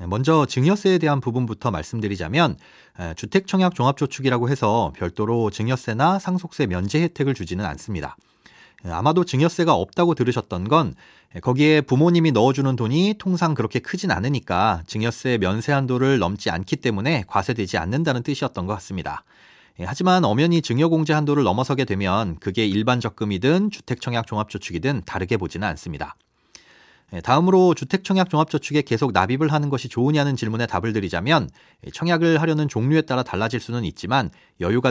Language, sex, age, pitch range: Korean, male, 30-49, 105-155 Hz